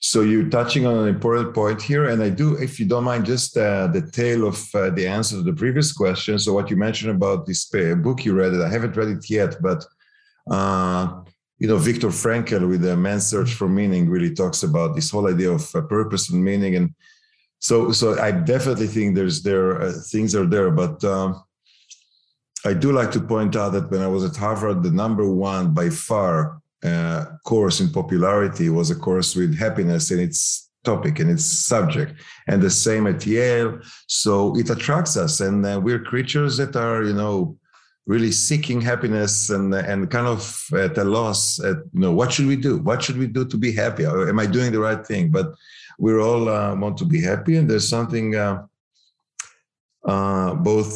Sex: male